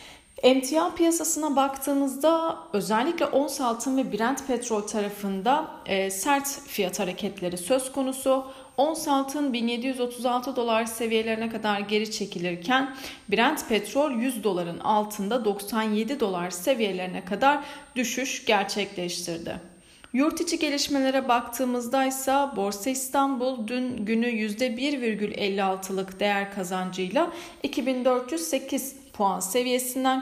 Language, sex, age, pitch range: Turkish, female, 40-59, 205-265 Hz